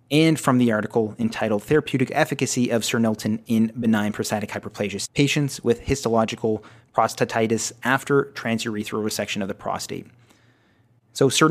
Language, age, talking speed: English, 30-49, 135 wpm